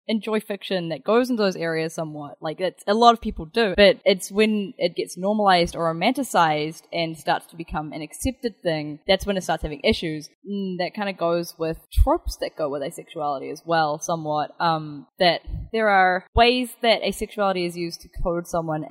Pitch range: 160-205 Hz